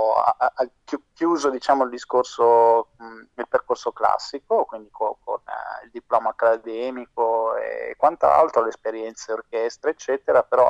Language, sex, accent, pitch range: Italian, male, native, 115-170 Hz